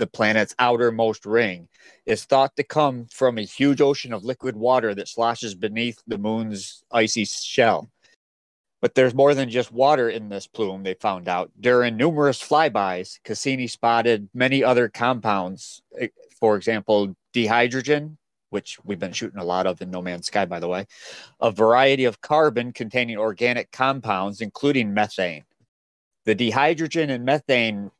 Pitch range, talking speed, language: 105-130 Hz, 155 wpm, English